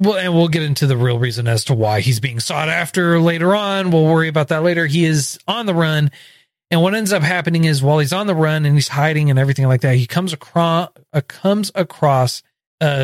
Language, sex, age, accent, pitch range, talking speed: English, male, 30-49, American, 135-170 Hz, 240 wpm